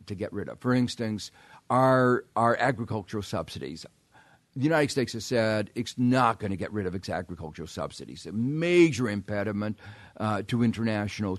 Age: 50-69